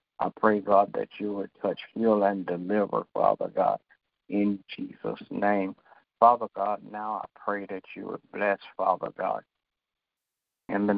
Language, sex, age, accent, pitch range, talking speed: English, male, 60-79, American, 95-105 Hz, 155 wpm